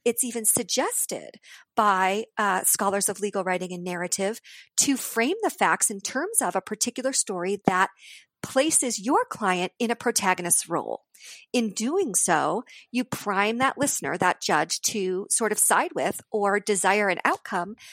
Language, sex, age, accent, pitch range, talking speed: English, female, 40-59, American, 195-240 Hz, 155 wpm